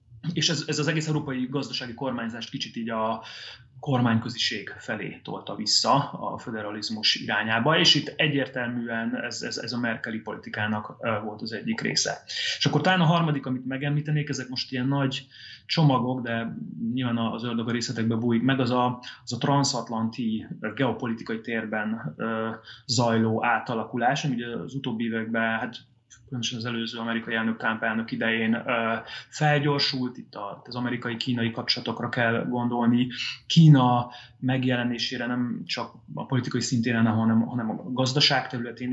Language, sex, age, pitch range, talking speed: Hungarian, male, 20-39, 115-135 Hz, 140 wpm